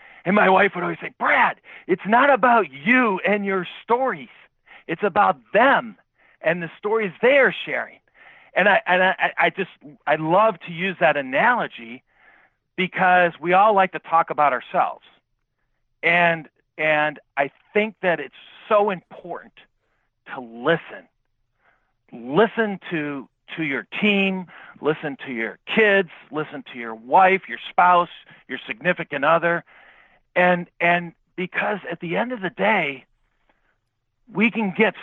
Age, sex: 50-69, male